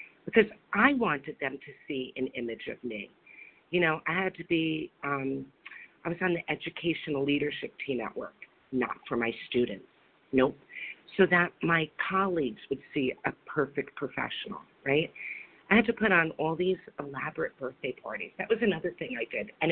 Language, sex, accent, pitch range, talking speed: English, female, American, 150-195 Hz, 175 wpm